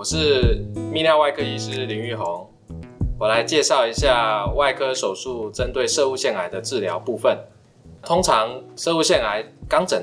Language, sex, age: Chinese, male, 20-39